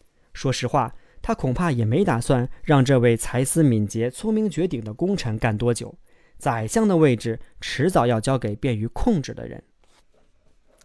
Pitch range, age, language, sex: 120-170 Hz, 20-39, Chinese, male